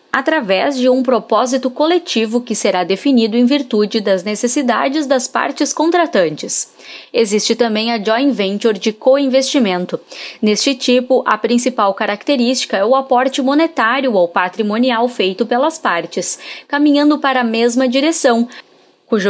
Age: 20-39